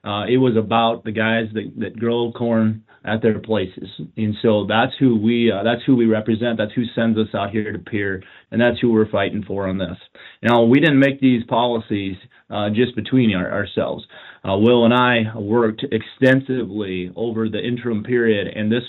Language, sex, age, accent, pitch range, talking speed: English, male, 30-49, American, 105-120 Hz, 195 wpm